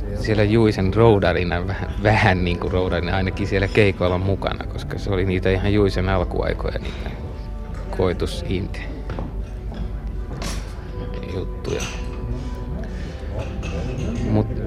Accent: native